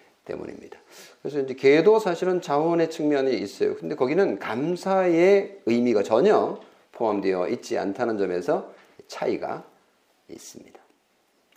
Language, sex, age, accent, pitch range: Korean, male, 40-59, native, 110-165 Hz